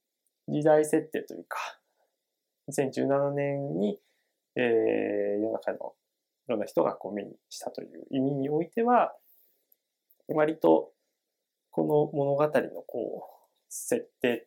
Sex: male